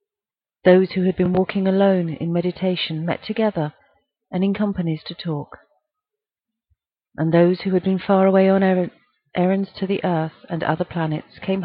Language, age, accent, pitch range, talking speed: English, 40-59, British, 165-195 Hz, 160 wpm